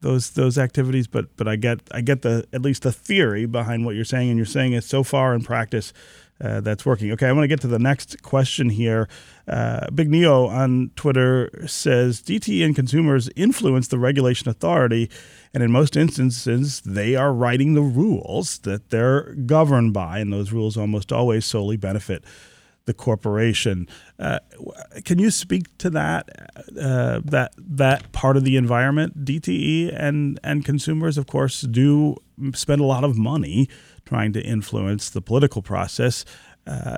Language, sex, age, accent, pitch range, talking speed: English, male, 40-59, American, 110-140 Hz, 170 wpm